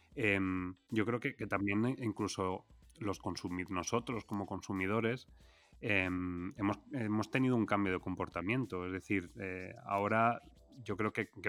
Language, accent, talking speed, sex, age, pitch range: Spanish, Spanish, 145 wpm, male, 30-49, 95-110 Hz